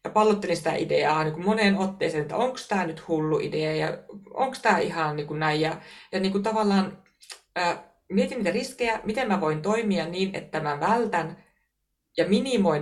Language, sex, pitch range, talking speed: Finnish, female, 160-205 Hz, 170 wpm